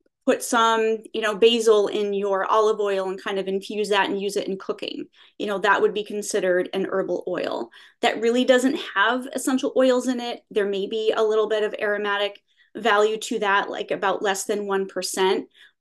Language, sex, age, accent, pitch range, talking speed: English, female, 20-39, American, 200-255 Hz, 195 wpm